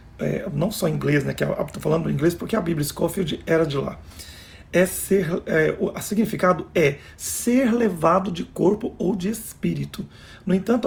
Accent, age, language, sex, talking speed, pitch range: Brazilian, 40-59, Portuguese, male, 190 wpm, 145-195 Hz